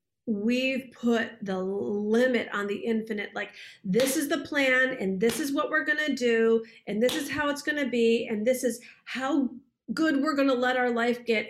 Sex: female